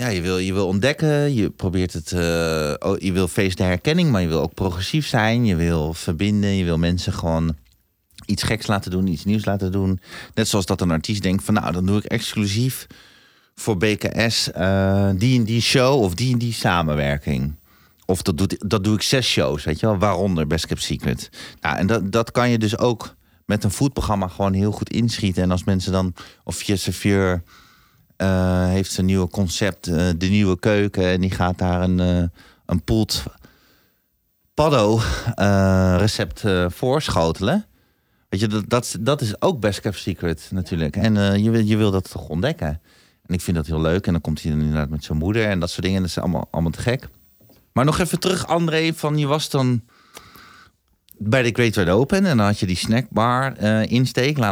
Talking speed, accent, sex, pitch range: 200 wpm, Dutch, male, 90-110 Hz